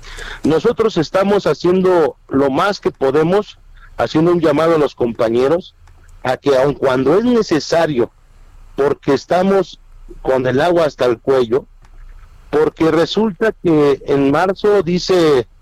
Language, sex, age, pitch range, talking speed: Spanish, male, 50-69, 140-185 Hz, 125 wpm